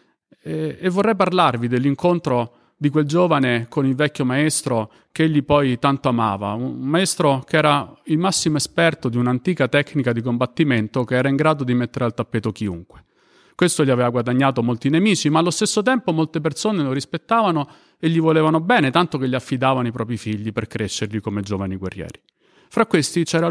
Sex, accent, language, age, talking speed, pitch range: male, native, Italian, 40-59, 180 wpm, 125-170 Hz